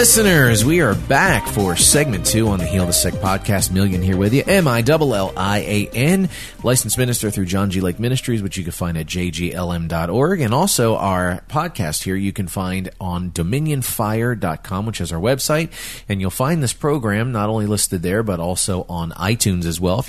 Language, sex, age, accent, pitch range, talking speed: English, male, 30-49, American, 90-115 Hz, 180 wpm